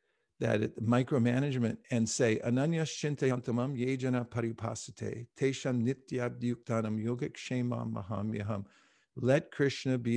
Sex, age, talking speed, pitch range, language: male, 50-69, 70 wpm, 110-130 Hz, English